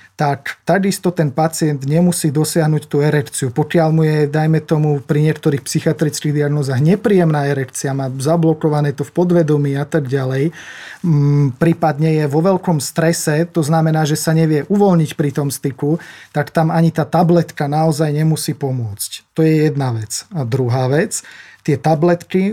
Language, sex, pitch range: Slovak, male, 145-165 Hz